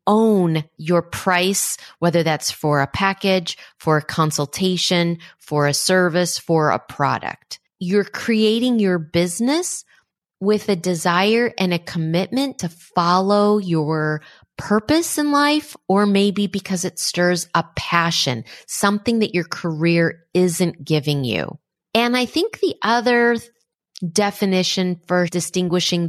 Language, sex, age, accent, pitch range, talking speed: English, female, 30-49, American, 165-210 Hz, 125 wpm